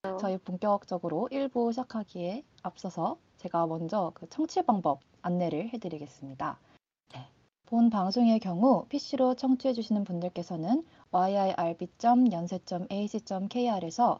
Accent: native